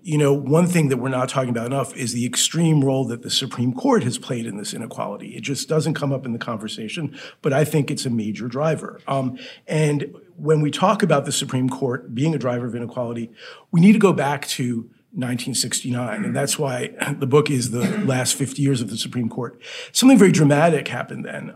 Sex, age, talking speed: male, 50-69, 215 wpm